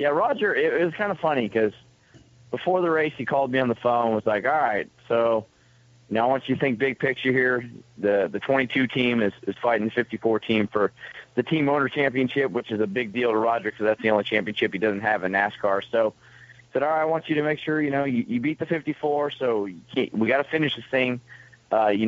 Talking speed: 255 wpm